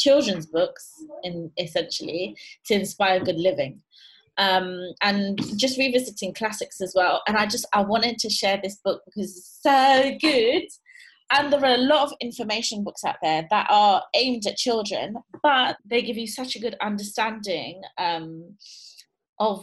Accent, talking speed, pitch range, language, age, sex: British, 160 wpm, 195-255 Hz, English, 20-39, female